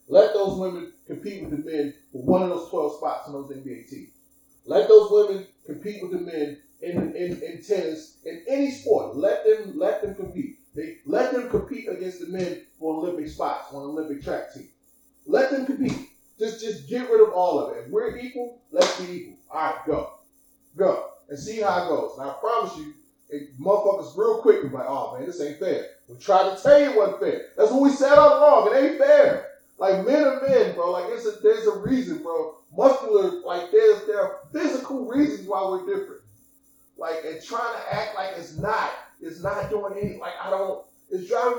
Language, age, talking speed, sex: English, 30-49, 210 wpm, male